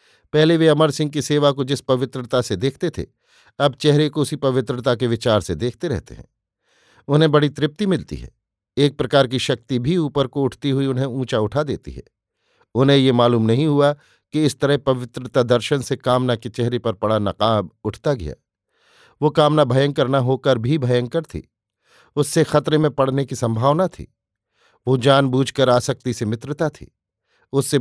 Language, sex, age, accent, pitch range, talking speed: Hindi, male, 50-69, native, 120-140 Hz, 180 wpm